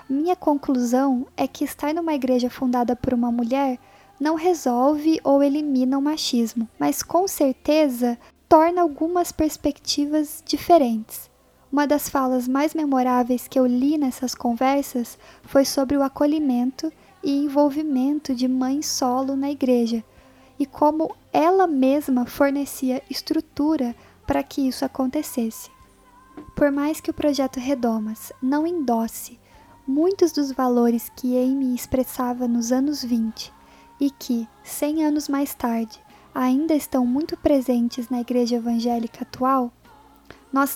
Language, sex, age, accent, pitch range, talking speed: Portuguese, female, 10-29, Brazilian, 250-295 Hz, 130 wpm